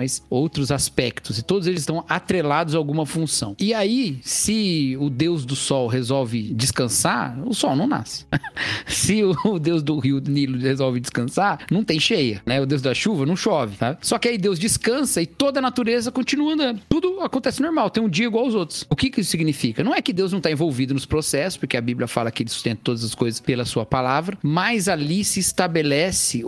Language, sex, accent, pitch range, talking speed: Portuguese, male, Brazilian, 130-185 Hz, 210 wpm